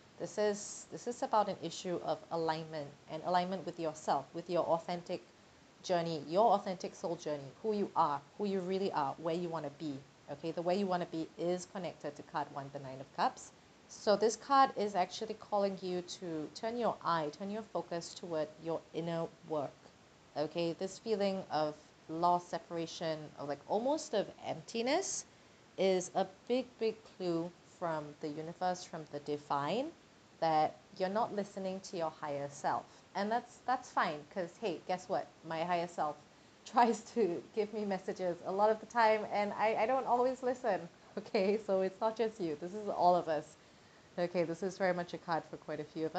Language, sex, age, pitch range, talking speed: English, female, 30-49, 160-210 Hz, 190 wpm